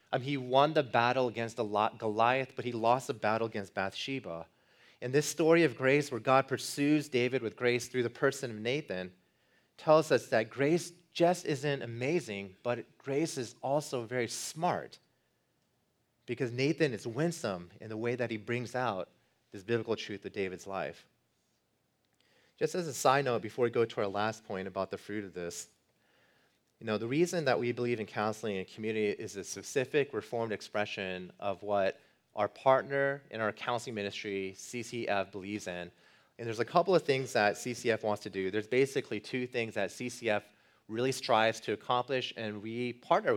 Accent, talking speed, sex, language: American, 175 wpm, male, English